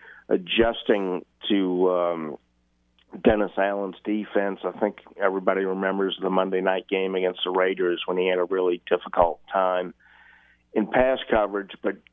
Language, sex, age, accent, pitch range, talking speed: English, male, 50-69, American, 90-100 Hz, 140 wpm